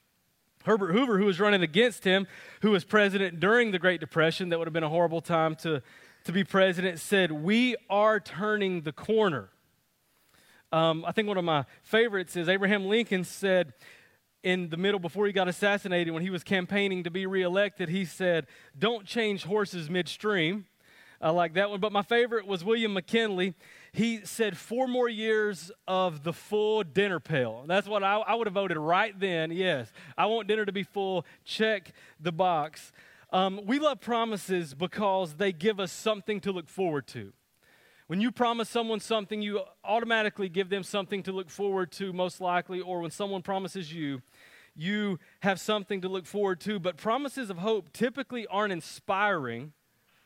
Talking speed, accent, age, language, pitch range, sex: 180 wpm, American, 30-49, English, 175-210 Hz, male